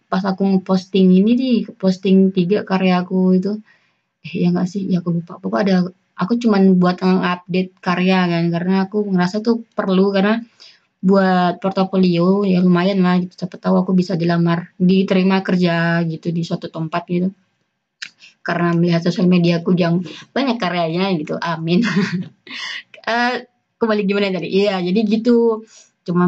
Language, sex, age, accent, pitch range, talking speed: Indonesian, female, 20-39, native, 185-240 Hz, 150 wpm